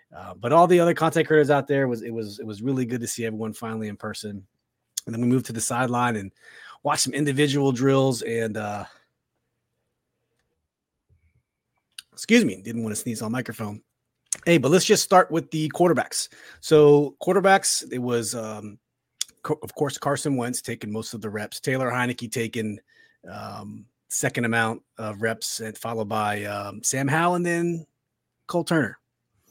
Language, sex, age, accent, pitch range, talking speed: English, male, 30-49, American, 115-150 Hz, 170 wpm